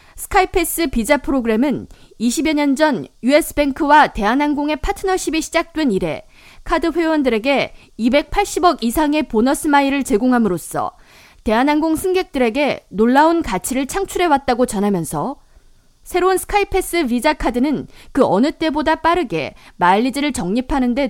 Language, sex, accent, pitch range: Korean, female, native, 250-335 Hz